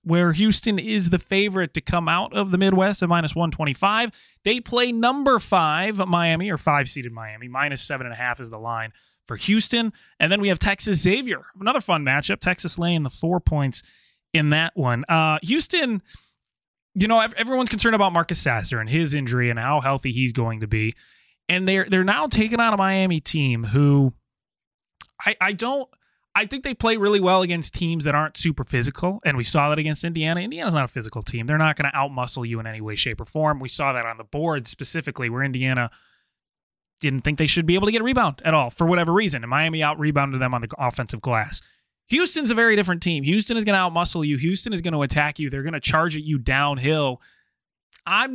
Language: English